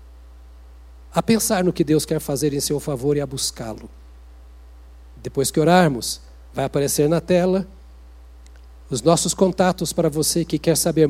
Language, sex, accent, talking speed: Portuguese, male, Brazilian, 150 wpm